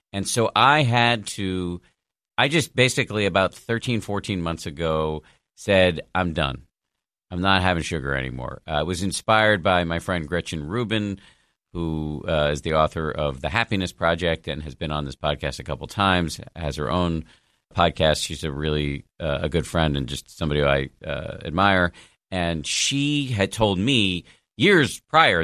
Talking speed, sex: 175 wpm, male